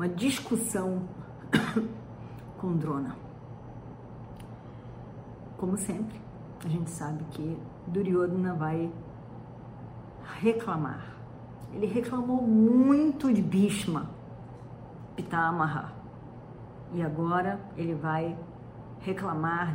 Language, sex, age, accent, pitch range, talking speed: Portuguese, female, 40-59, Brazilian, 160-235 Hz, 70 wpm